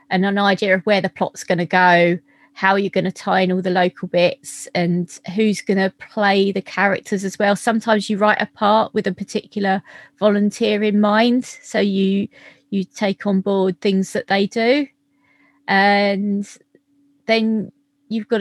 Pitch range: 190-235 Hz